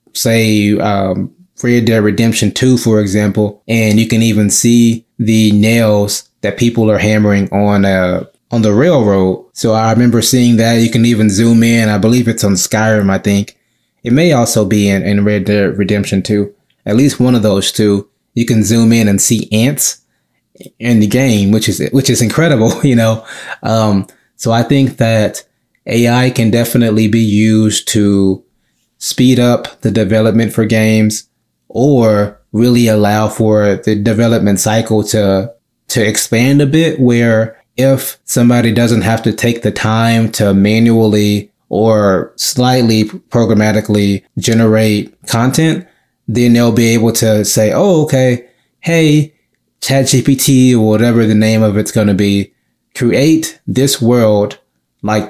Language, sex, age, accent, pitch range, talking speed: English, male, 20-39, American, 105-120 Hz, 155 wpm